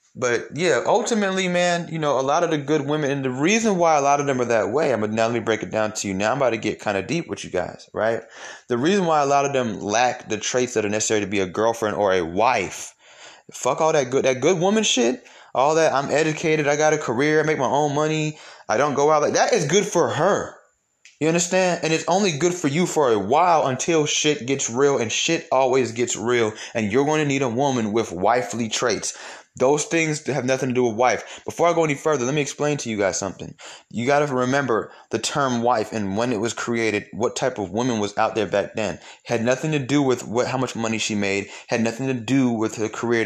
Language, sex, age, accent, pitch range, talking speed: English, male, 20-39, American, 110-150 Hz, 255 wpm